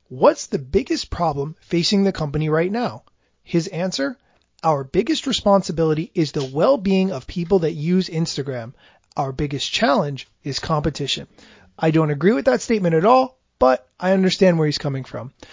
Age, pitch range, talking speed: 30-49, 150-205 Hz, 160 wpm